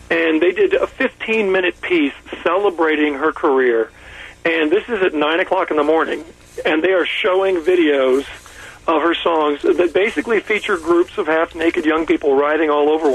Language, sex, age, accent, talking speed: English, male, 40-59, American, 170 wpm